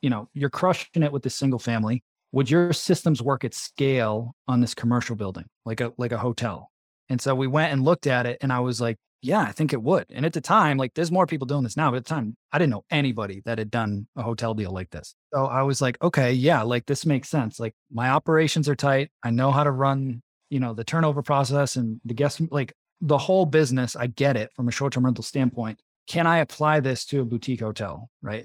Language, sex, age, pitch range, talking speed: English, male, 20-39, 120-150 Hz, 245 wpm